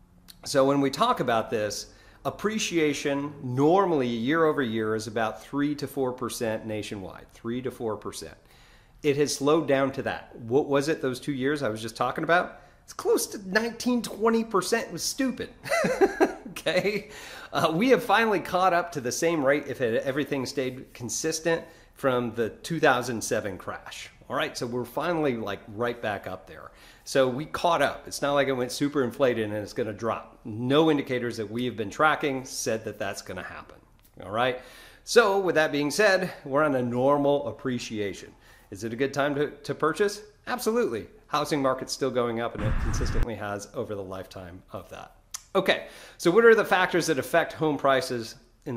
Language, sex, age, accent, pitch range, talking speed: English, male, 40-59, American, 115-160 Hz, 180 wpm